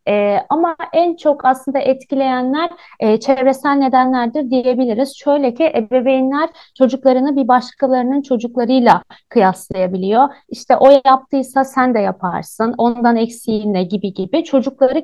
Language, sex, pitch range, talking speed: Turkish, female, 230-280 Hz, 115 wpm